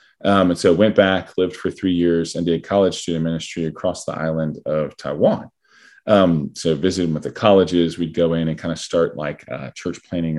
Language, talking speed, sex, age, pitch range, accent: English, 210 wpm, male, 20-39, 80-95 Hz, American